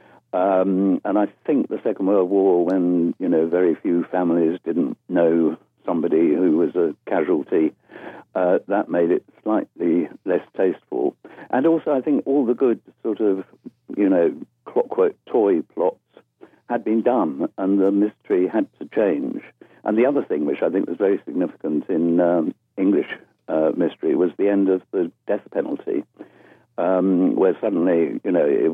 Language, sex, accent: English, male, British